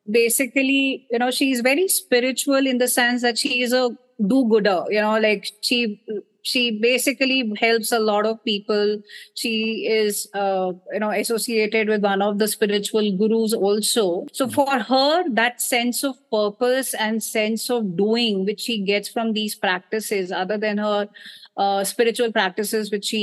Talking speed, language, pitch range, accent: 165 wpm, English, 210-260 Hz, Indian